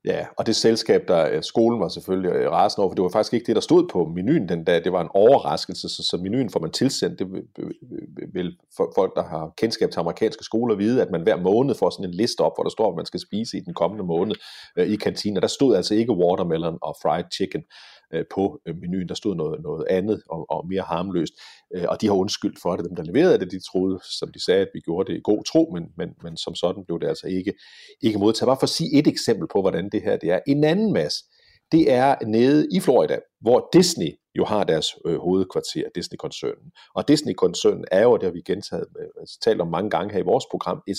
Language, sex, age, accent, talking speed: Danish, male, 30-49, native, 235 wpm